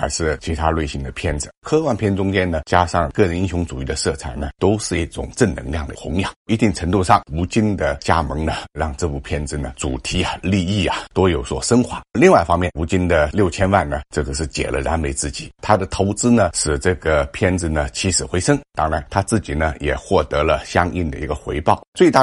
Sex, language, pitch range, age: male, Chinese, 75-100 Hz, 50-69